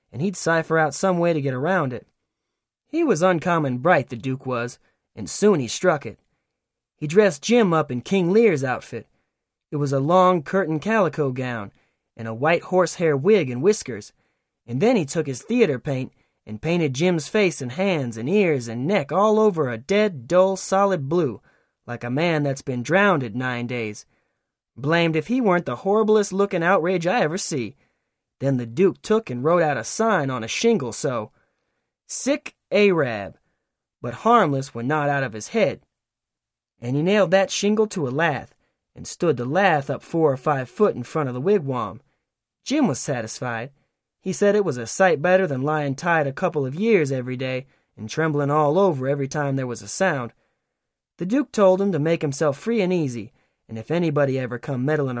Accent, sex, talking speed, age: American, male, 190 wpm, 20-39